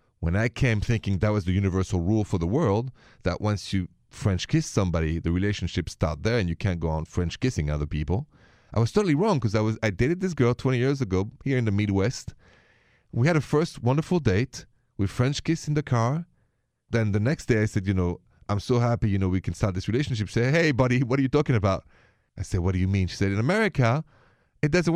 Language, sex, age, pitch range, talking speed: English, male, 30-49, 95-125 Hz, 240 wpm